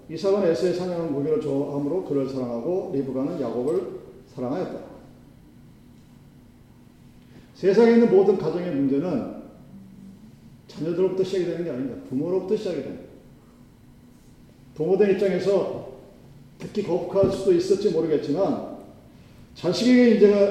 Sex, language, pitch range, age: male, Korean, 150-215 Hz, 40-59